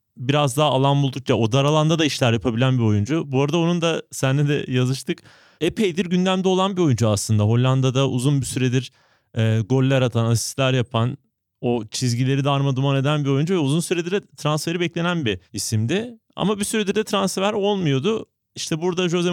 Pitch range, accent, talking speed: 125-170 Hz, native, 175 wpm